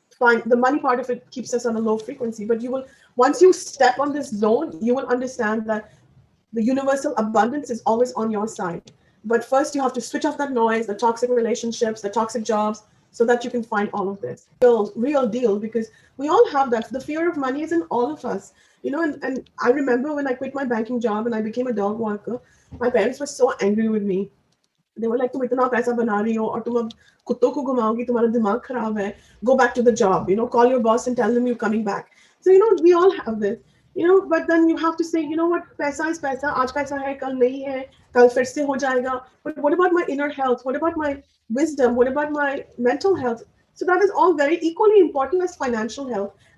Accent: native